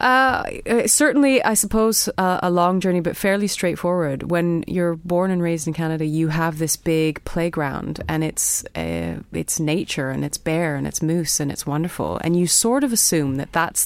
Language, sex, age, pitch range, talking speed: English, female, 30-49, 140-170 Hz, 190 wpm